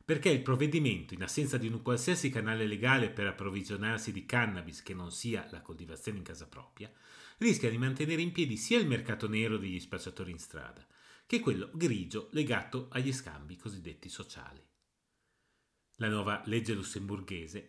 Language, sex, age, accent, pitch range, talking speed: Italian, male, 40-59, native, 95-140 Hz, 160 wpm